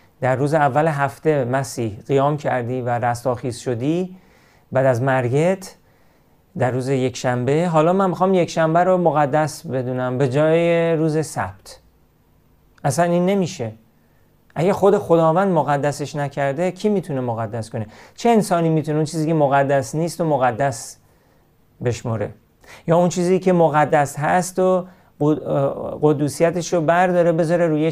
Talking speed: 135 wpm